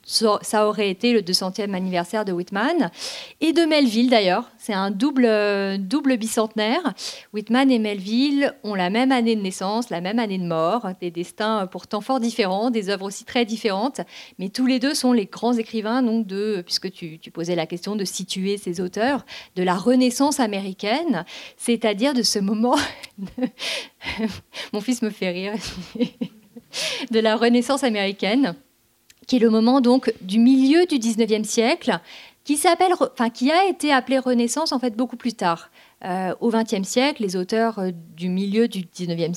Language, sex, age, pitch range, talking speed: French, female, 40-59, 195-245 Hz, 170 wpm